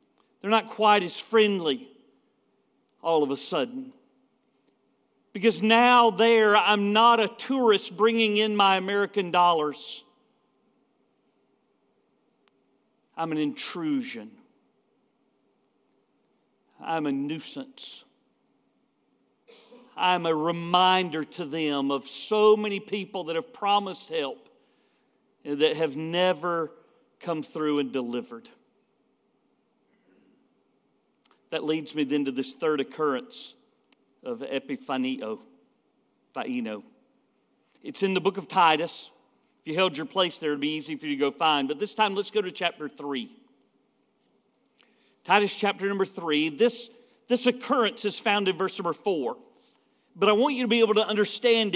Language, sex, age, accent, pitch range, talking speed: English, male, 50-69, American, 160-225 Hz, 125 wpm